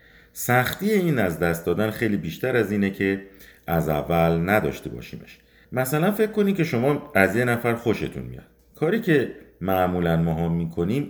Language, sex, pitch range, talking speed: Persian, male, 85-120 Hz, 160 wpm